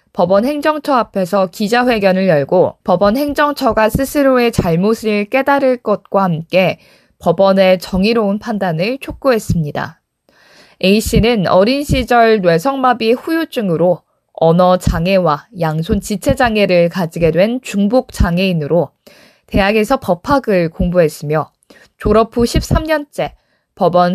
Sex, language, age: female, Korean, 20-39